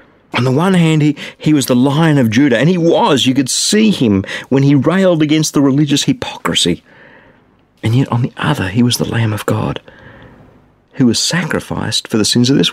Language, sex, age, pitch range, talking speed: English, male, 50-69, 110-150 Hz, 205 wpm